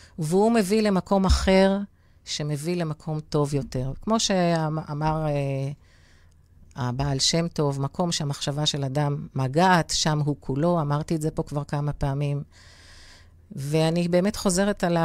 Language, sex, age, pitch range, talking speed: Hebrew, female, 40-59, 140-170 Hz, 130 wpm